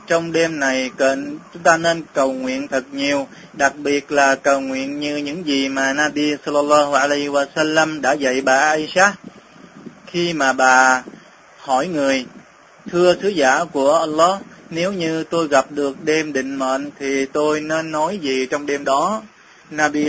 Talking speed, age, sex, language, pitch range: 160 wpm, 20-39, male, Vietnamese, 140-175 Hz